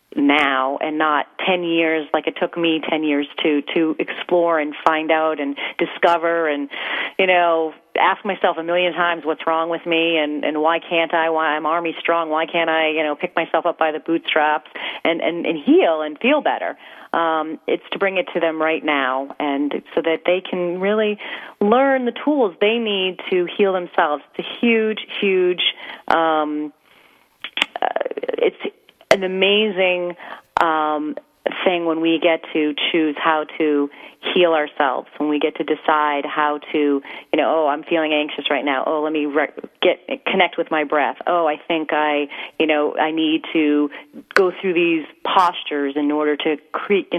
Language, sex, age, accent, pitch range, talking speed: English, female, 30-49, American, 150-175 Hz, 185 wpm